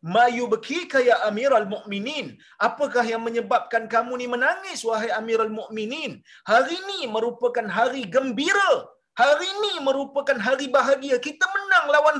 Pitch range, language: 180-280 Hz, Malayalam